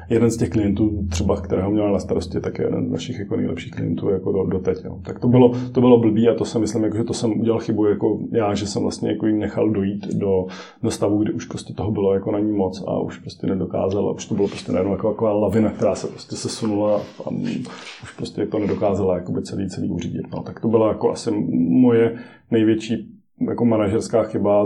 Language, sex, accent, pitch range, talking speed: Czech, male, native, 95-115 Hz, 240 wpm